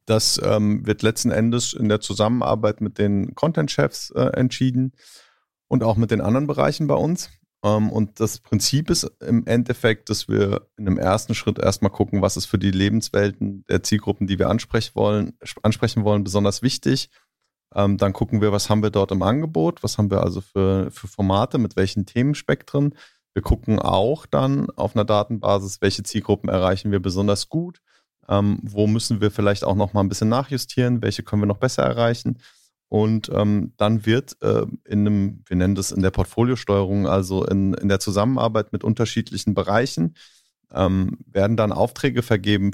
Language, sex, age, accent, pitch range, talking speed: German, male, 30-49, German, 100-115 Hz, 180 wpm